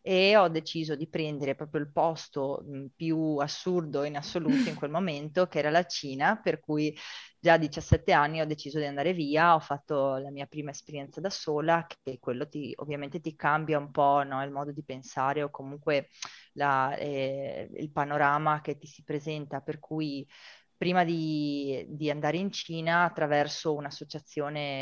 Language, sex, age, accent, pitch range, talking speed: Italian, female, 20-39, native, 140-160 Hz, 170 wpm